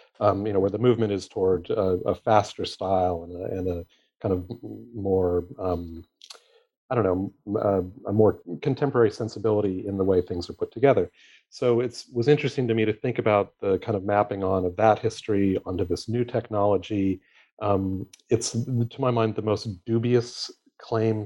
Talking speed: 180 wpm